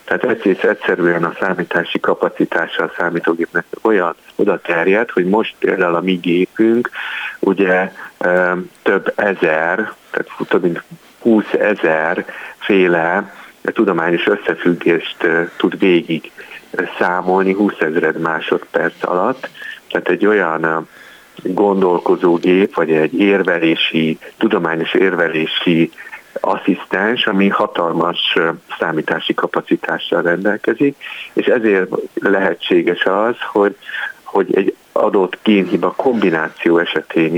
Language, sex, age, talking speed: Hungarian, male, 50-69, 95 wpm